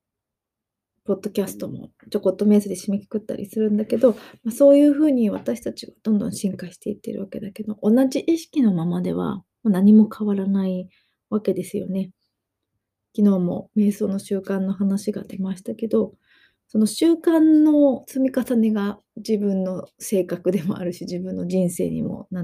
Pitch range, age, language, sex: 190-235 Hz, 20-39, Japanese, female